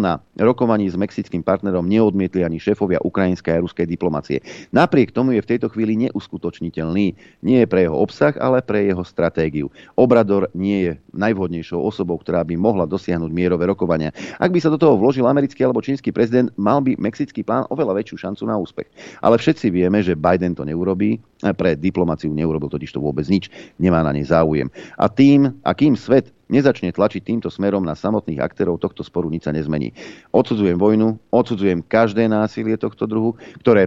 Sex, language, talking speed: male, Slovak, 175 wpm